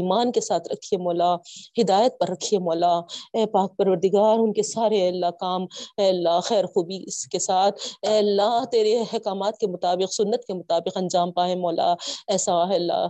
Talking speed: 170 wpm